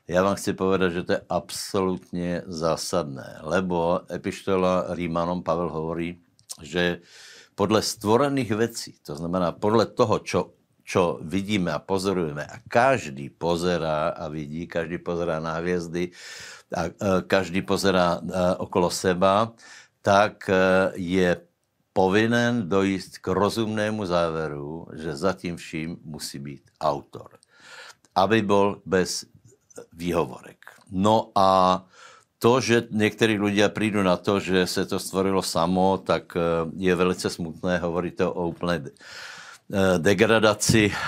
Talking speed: 115 wpm